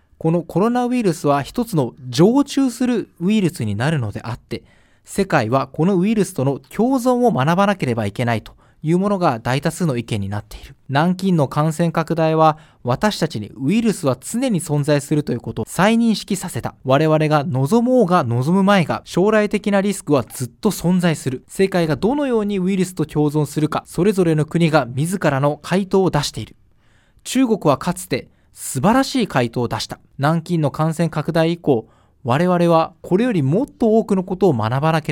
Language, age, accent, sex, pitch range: Japanese, 20-39, native, male, 140-195 Hz